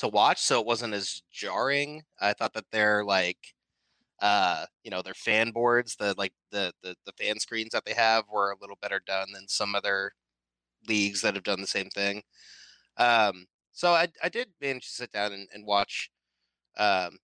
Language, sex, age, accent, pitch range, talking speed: English, male, 20-39, American, 105-135 Hz, 195 wpm